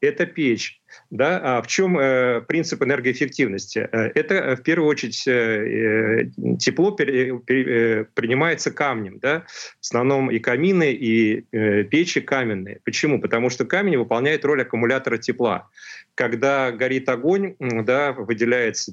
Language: Russian